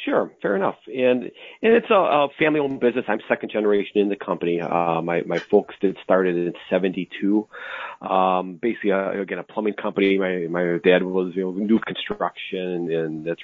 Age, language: 30-49, English